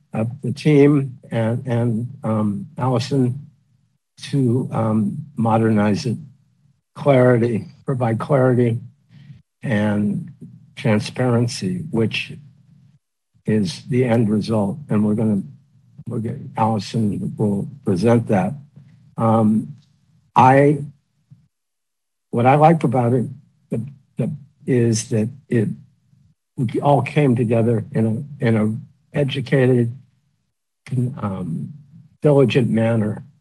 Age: 60-79